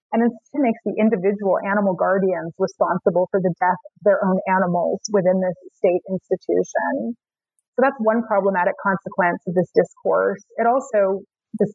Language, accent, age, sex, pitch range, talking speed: English, American, 30-49, female, 185-220 Hz, 155 wpm